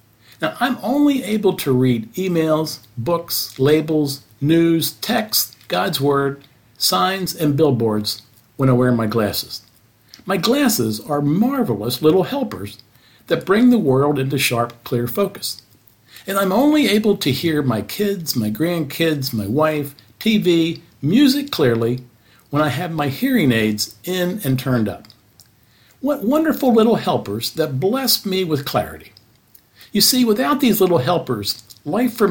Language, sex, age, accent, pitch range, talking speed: English, male, 50-69, American, 120-195 Hz, 145 wpm